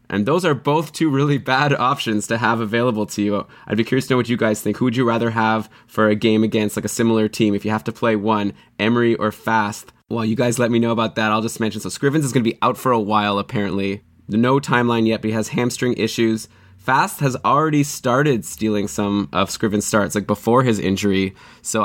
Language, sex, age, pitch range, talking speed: English, male, 20-39, 105-120 Hz, 240 wpm